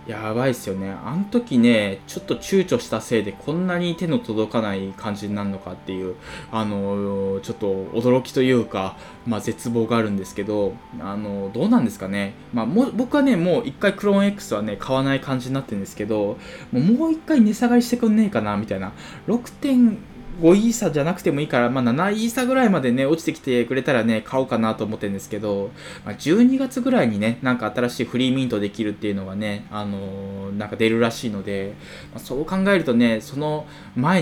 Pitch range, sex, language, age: 105-165 Hz, male, Japanese, 20-39